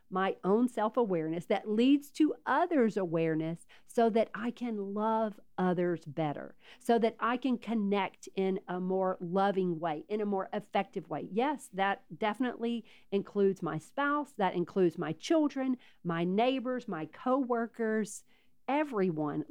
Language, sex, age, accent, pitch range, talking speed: English, female, 50-69, American, 180-235 Hz, 140 wpm